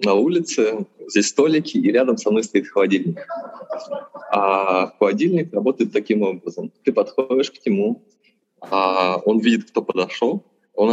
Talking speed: 135 wpm